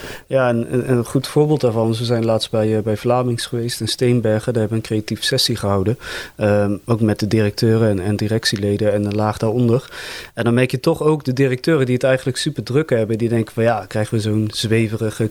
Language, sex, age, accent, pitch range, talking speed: Dutch, male, 30-49, Dutch, 110-130 Hz, 220 wpm